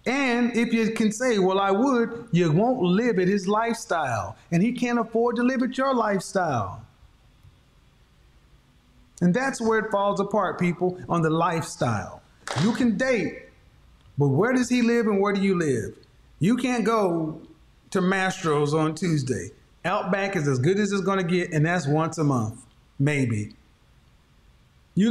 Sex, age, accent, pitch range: male, 30-49, American, 155-225 Hz